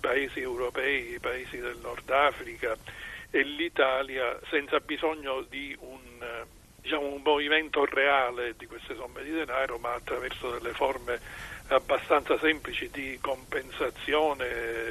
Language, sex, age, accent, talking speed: Italian, male, 50-69, native, 120 wpm